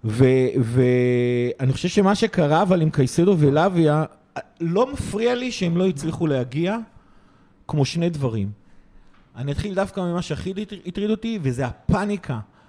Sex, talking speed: male, 130 wpm